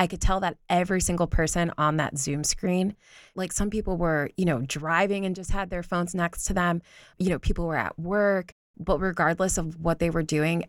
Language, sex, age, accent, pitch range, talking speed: English, female, 20-39, American, 145-170 Hz, 220 wpm